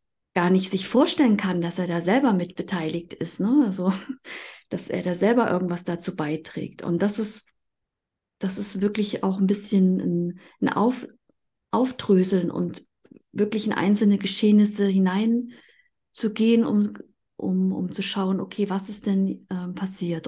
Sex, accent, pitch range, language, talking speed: female, German, 180-210 Hz, German, 150 wpm